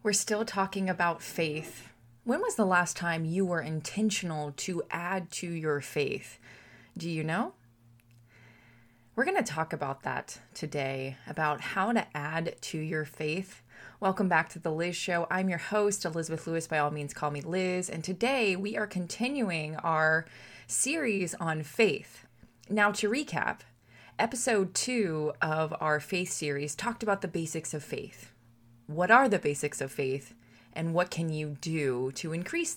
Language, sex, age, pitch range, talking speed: English, female, 20-39, 150-200 Hz, 165 wpm